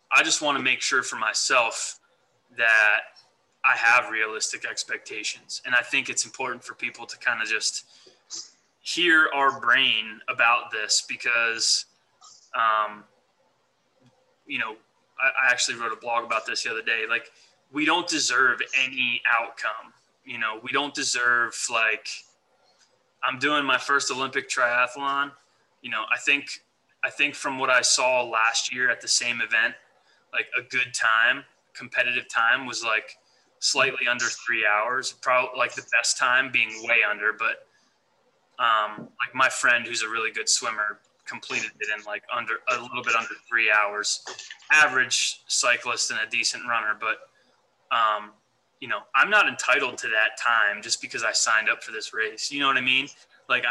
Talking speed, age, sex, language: 165 wpm, 20-39, male, English